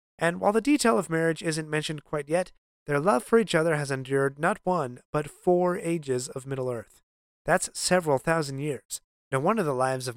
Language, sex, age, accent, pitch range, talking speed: English, male, 30-49, American, 135-180 Hz, 195 wpm